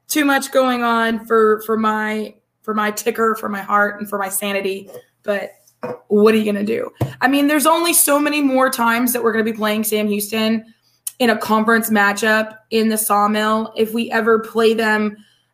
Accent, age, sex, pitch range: American, 20-39, female, 205-230 Hz